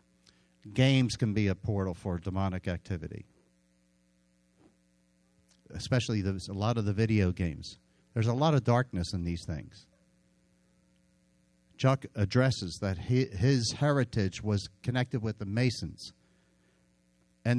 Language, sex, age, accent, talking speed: English, male, 50-69, American, 115 wpm